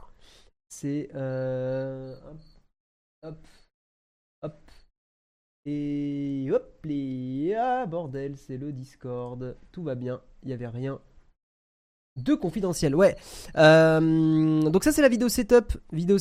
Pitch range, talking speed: 125-180 Hz, 115 wpm